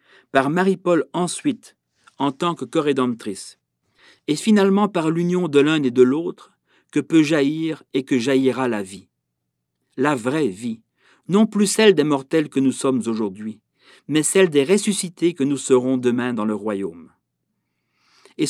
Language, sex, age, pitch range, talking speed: French, male, 50-69, 130-170 Hz, 155 wpm